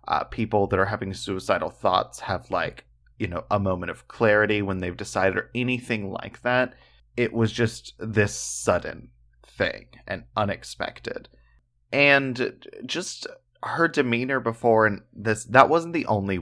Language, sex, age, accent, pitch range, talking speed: English, male, 30-49, American, 95-120 Hz, 150 wpm